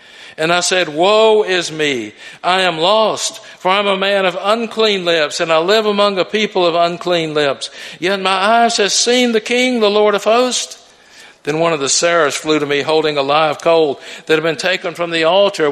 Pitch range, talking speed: 140-185 Hz, 215 wpm